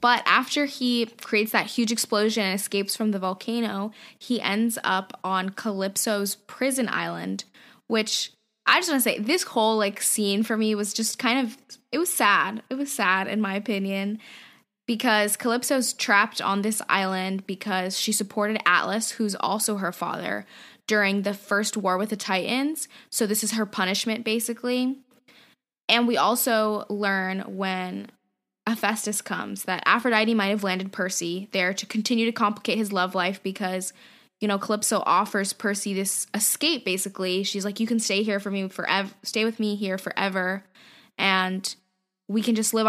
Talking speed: 170 wpm